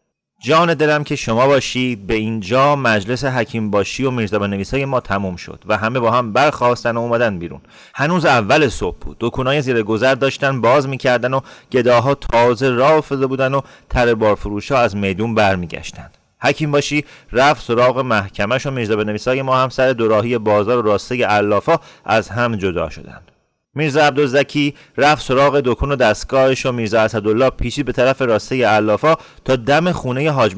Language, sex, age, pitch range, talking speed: Persian, male, 30-49, 105-135 Hz, 170 wpm